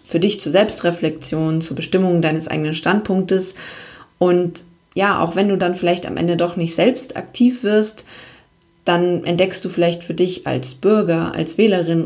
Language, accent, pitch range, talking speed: German, German, 160-185 Hz, 165 wpm